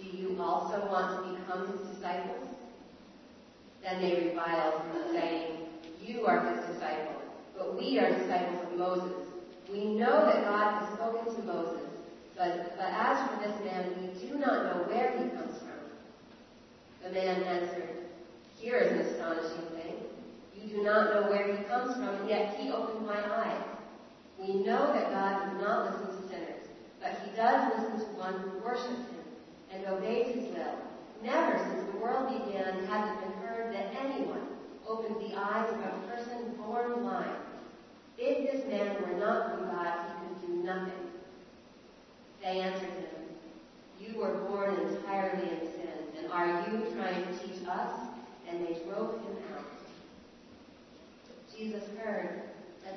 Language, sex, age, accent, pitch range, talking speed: English, female, 40-59, American, 185-220 Hz, 155 wpm